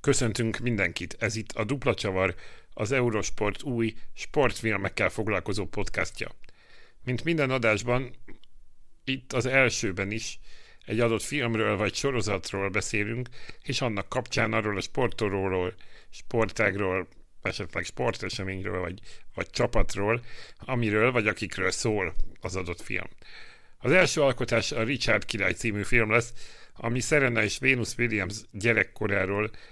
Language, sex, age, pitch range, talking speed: Hungarian, male, 60-79, 100-120 Hz, 120 wpm